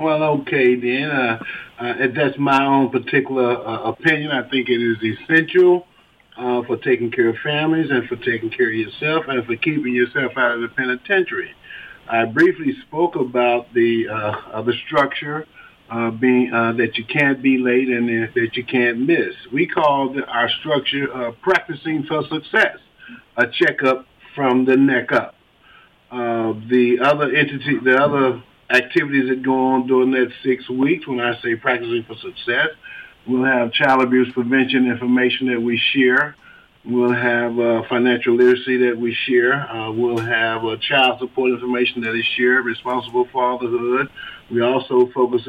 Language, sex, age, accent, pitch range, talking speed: English, male, 50-69, American, 120-140 Hz, 165 wpm